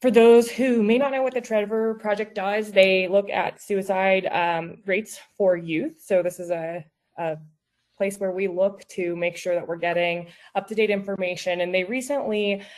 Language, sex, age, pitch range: English, female, 20-39, 165-215 Hz